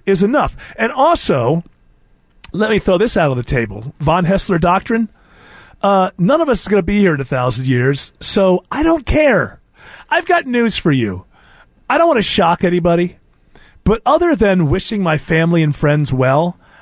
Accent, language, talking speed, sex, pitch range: American, English, 185 wpm, male, 160-245 Hz